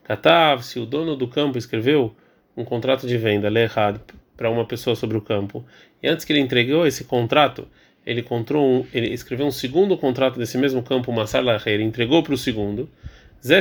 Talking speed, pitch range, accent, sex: 190 wpm, 120-150 Hz, Brazilian, male